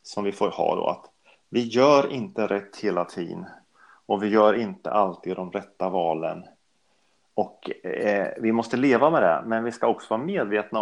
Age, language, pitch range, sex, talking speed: 30-49, Swedish, 110-135 Hz, male, 185 wpm